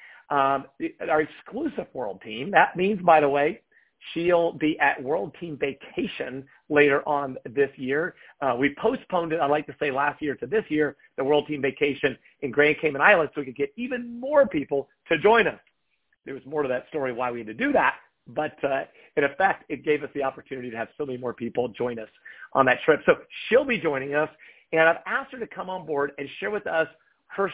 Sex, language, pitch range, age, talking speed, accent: male, English, 140-195 Hz, 50-69, 220 wpm, American